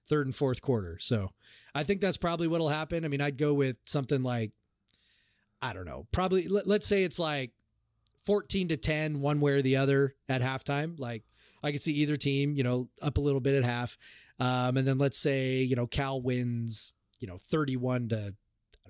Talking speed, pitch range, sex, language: 210 wpm, 120-160 Hz, male, English